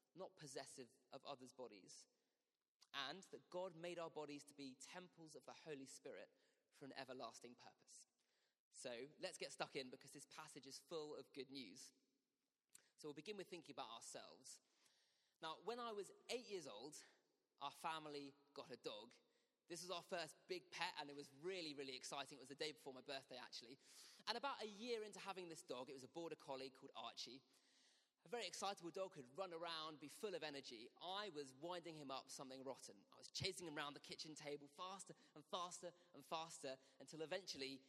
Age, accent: 20-39, British